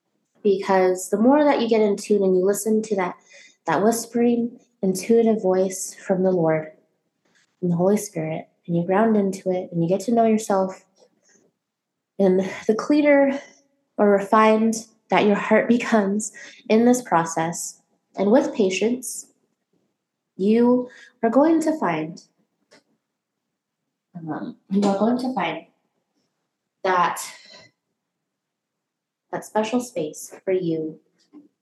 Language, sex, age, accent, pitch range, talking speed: English, female, 20-39, American, 190-275 Hz, 125 wpm